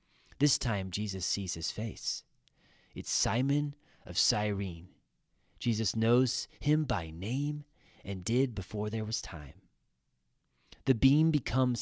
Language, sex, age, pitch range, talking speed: English, male, 30-49, 100-130 Hz, 120 wpm